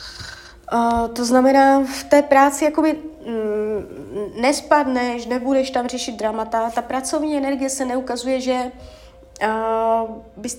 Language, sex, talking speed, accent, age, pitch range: Czech, female, 120 wpm, native, 30-49, 215-265 Hz